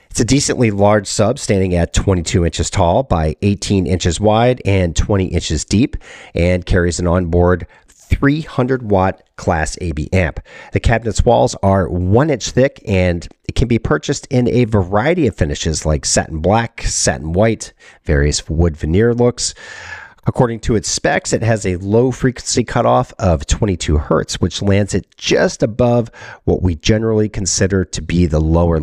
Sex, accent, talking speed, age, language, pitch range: male, American, 165 wpm, 40-59, English, 85-115 Hz